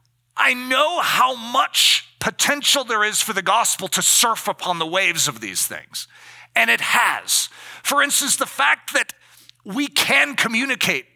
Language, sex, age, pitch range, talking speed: English, male, 40-59, 175-235 Hz, 155 wpm